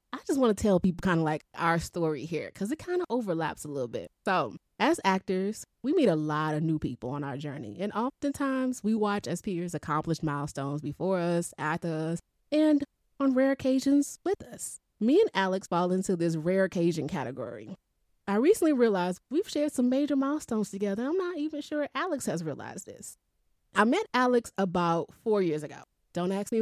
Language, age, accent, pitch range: English, 20-39, American, 165-235 Hz